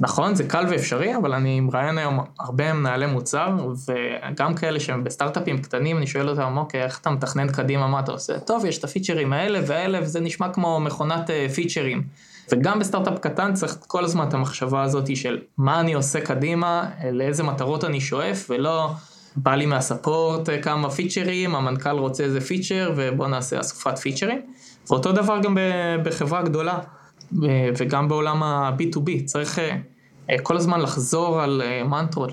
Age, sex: 20-39, male